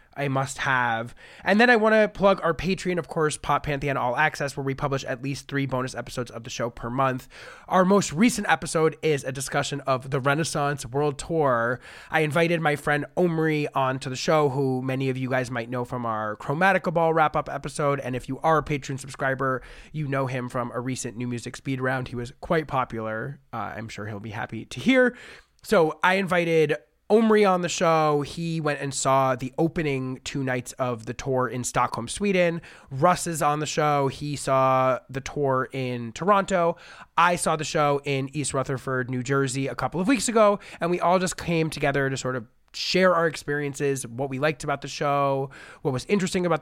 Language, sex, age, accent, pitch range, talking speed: English, male, 20-39, American, 130-160 Hz, 205 wpm